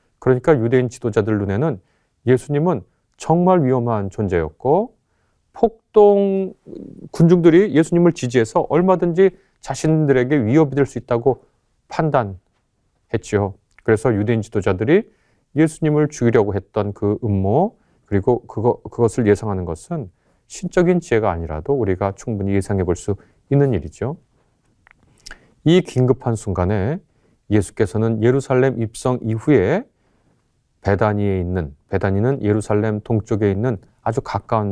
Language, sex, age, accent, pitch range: Korean, male, 30-49, native, 100-140 Hz